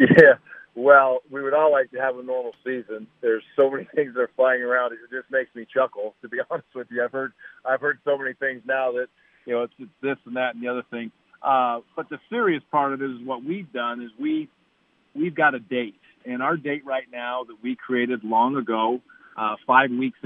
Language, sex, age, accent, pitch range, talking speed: English, male, 50-69, American, 125-145 Hz, 235 wpm